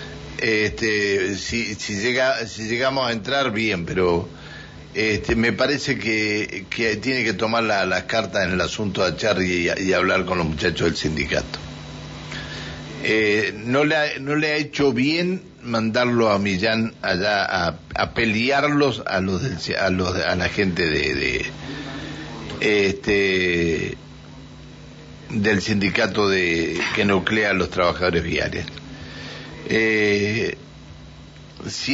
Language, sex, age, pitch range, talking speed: Spanish, male, 60-79, 90-120 Hz, 135 wpm